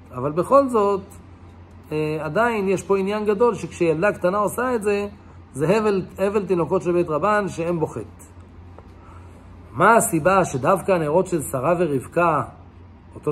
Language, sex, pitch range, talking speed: English, male, 125-205 Hz, 135 wpm